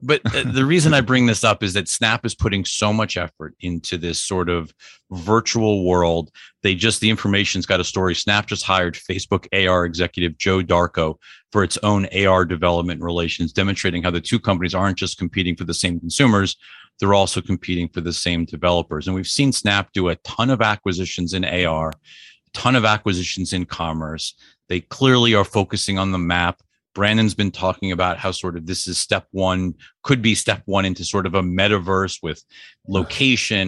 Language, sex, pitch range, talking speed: English, male, 90-110 Hz, 190 wpm